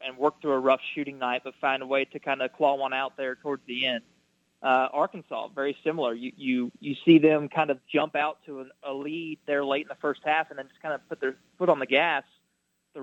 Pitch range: 135-165 Hz